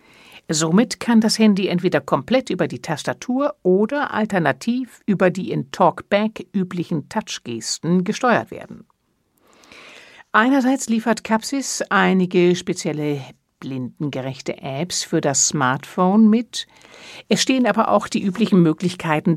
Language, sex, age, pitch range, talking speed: German, female, 60-79, 160-215 Hz, 115 wpm